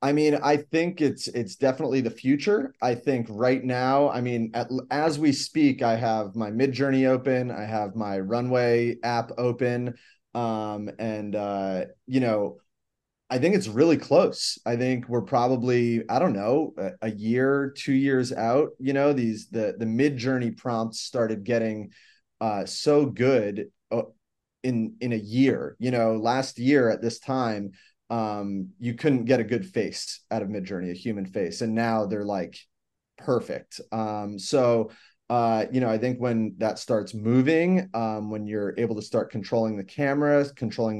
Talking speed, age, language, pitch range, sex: 170 wpm, 20-39, English, 110-130 Hz, male